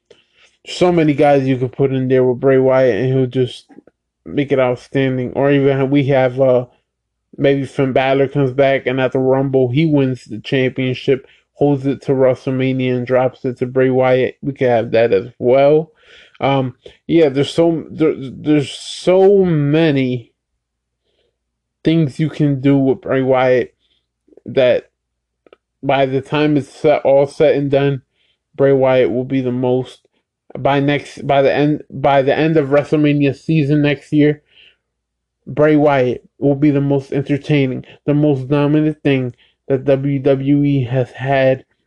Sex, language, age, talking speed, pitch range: male, English, 20-39, 160 wpm, 130-150 Hz